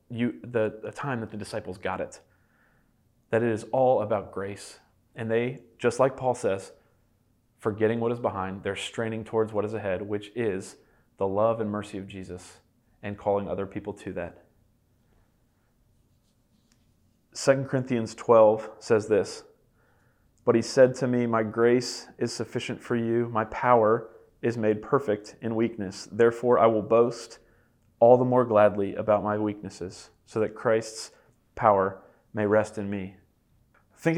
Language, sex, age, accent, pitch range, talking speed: English, male, 30-49, American, 105-125 Hz, 155 wpm